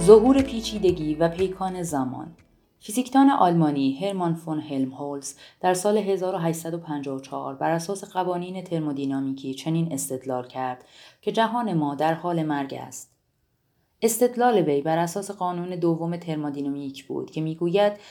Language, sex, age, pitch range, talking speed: Persian, female, 30-49, 140-180 Hz, 125 wpm